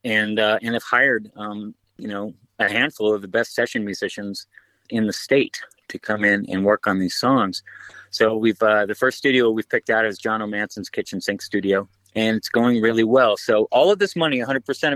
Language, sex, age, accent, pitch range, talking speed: English, male, 30-49, American, 100-125 Hz, 210 wpm